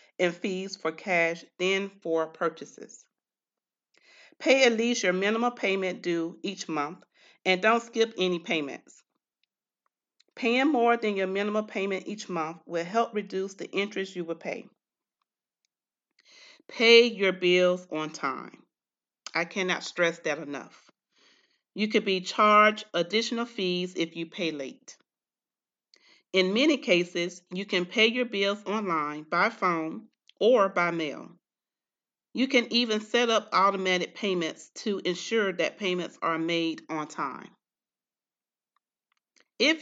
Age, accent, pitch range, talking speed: 40-59, American, 175-220 Hz, 130 wpm